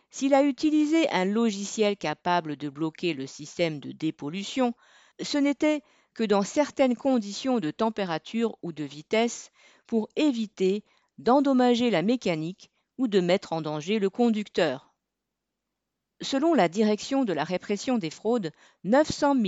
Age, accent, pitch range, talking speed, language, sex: 50-69, French, 180-245 Hz, 135 wpm, French, female